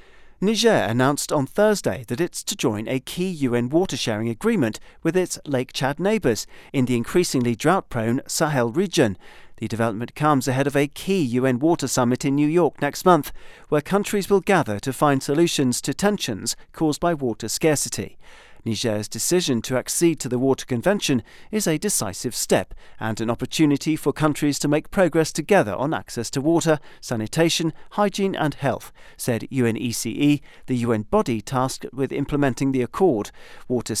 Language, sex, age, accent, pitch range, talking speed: English, male, 40-59, British, 125-160 Hz, 160 wpm